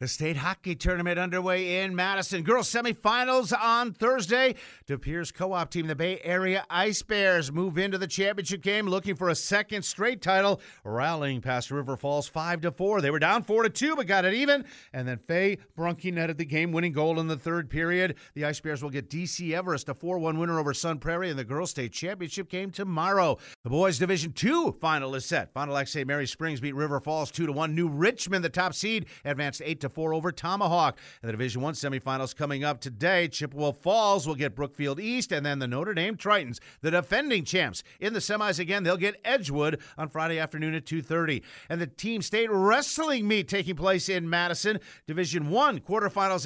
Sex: male